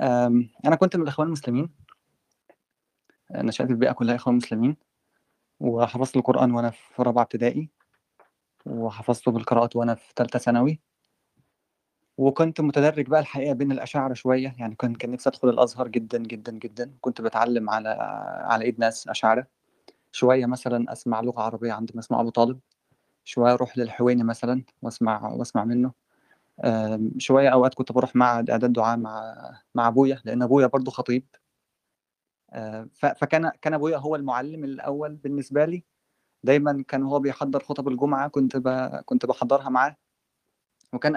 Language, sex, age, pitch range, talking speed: Arabic, male, 20-39, 120-145 Hz, 140 wpm